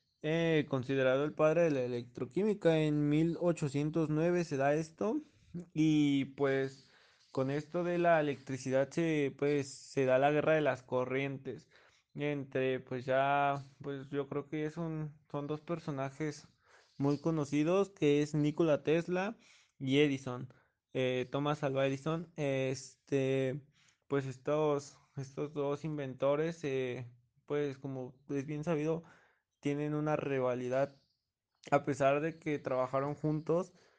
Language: Spanish